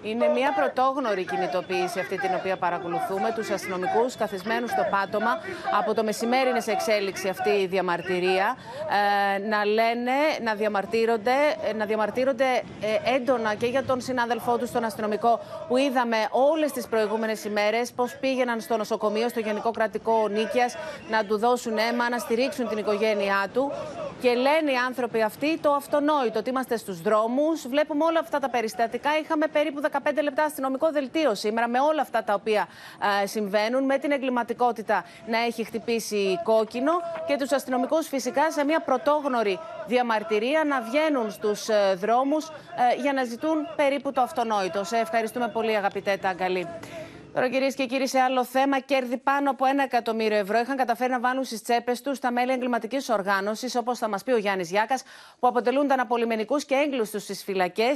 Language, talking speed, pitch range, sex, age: Greek, 160 wpm, 215-275 Hz, female, 30-49